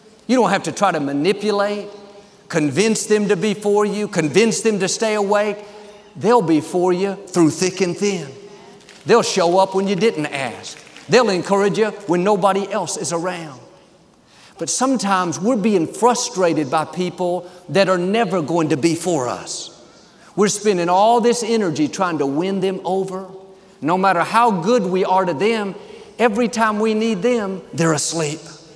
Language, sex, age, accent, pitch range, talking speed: English, male, 50-69, American, 170-225 Hz, 170 wpm